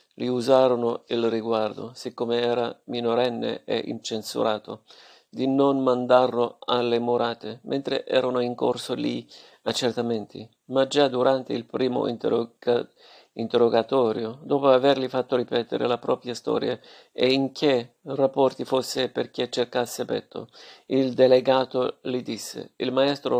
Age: 50-69